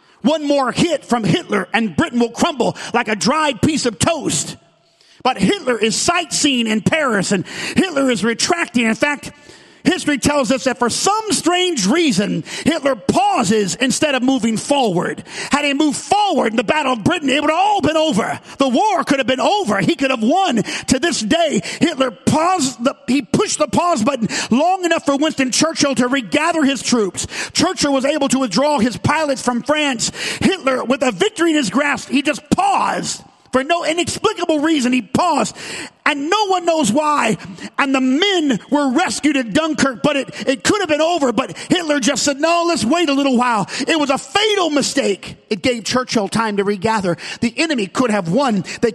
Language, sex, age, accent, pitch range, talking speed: English, male, 50-69, American, 240-305 Hz, 190 wpm